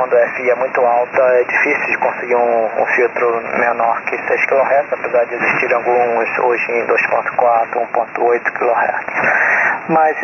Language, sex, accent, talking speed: Portuguese, male, Brazilian, 160 wpm